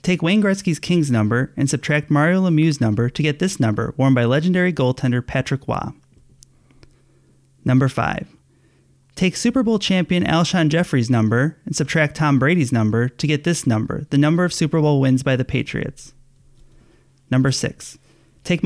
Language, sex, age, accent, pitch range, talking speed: English, male, 30-49, American, 125-155 Hz, 160 wpm